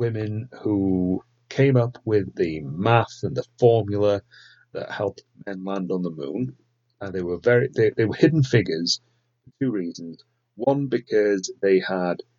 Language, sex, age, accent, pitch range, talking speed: English, male, 40-59, British, 100-120 Hz, 160 wpm